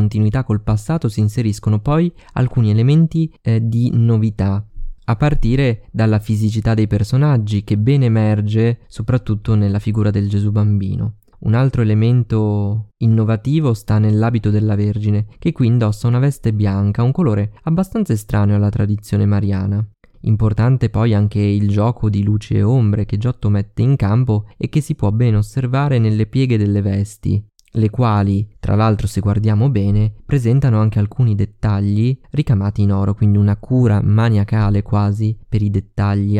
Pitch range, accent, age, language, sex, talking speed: 105-120 Hz, native, 20-39, Italian, male, 155 wpm